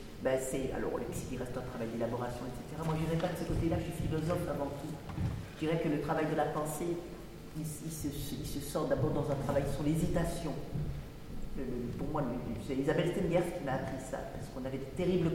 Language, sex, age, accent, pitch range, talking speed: French, female, 40-59, French, 140-165 Hz, 235 wpm